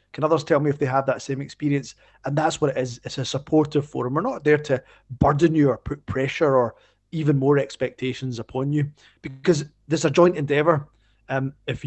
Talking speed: 205 wpm